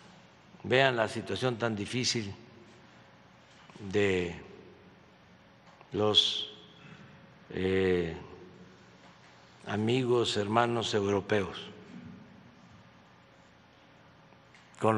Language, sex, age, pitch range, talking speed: Spanish, male, 60-79, 110-155 Hz, 50 wpm